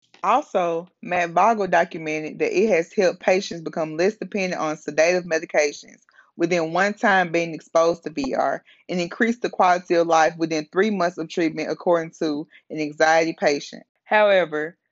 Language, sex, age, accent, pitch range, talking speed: English, female, 20-39, American, 165-195 Hz, 155 wpm